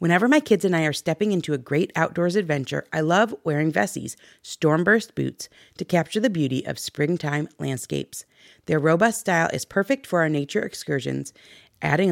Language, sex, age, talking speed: English, female, 40-59, 175 wpm